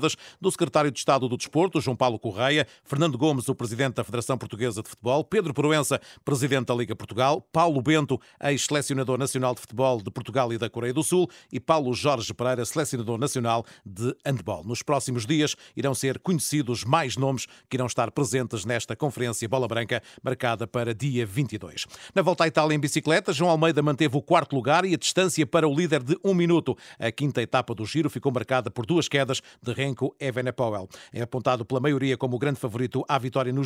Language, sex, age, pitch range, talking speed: Portuguese, male, 40-59, 120-145 Hz, 195 wpm